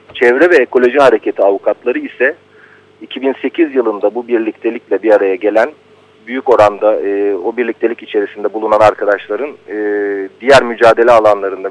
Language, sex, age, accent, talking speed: Turkish, male, 40-59, native, 130 wpm